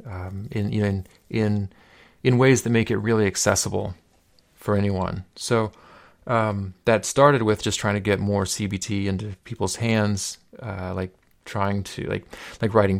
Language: English